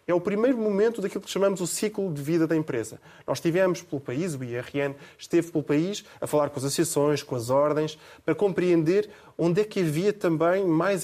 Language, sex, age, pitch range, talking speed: Portuguese, male, 20-39, 140-175 Hz, 205 wpm